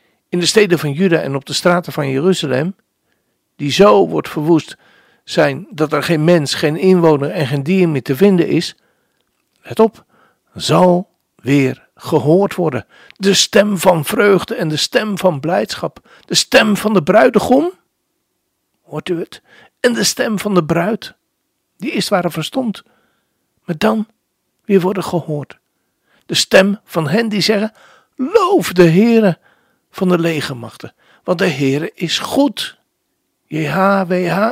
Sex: male